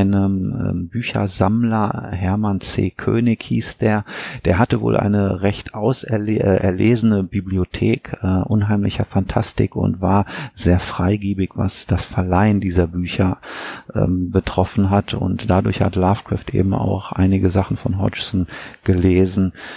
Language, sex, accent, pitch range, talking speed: German, male, German, 90-105 Hz, 125 wpm